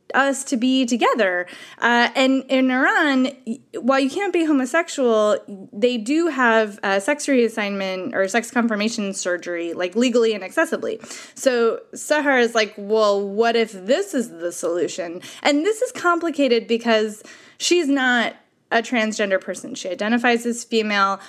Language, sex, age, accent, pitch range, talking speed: English, female, 20-39, American, 210-270 Hz, 145 wpm